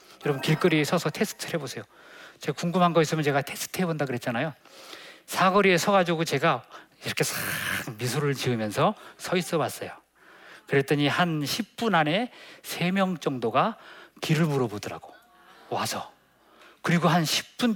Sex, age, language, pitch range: male, 40-59, Korean, 135-185 Hz